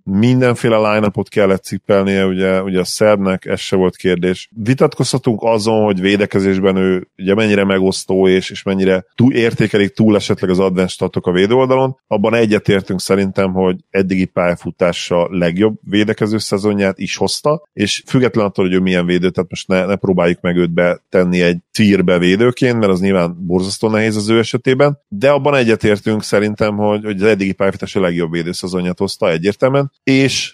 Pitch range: 95-110 Hz